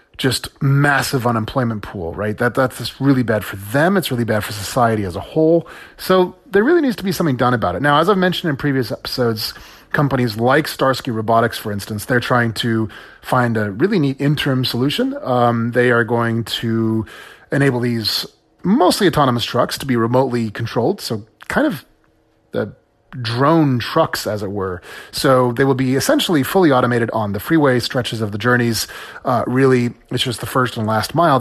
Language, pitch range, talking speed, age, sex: English, 110-140 Hz, 185 wpm, 30-49, male